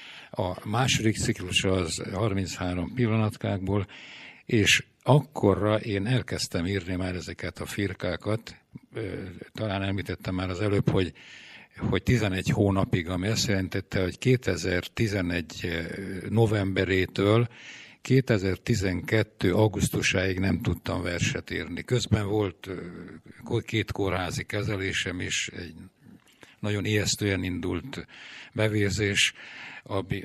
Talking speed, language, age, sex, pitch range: 95 wpm, Hungarian, 60-79, male, 95-110 Hz